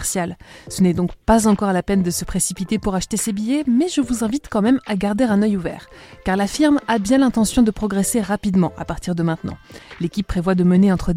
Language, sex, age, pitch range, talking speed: French, female, 20-39, 185-230 Hz, 230 wpm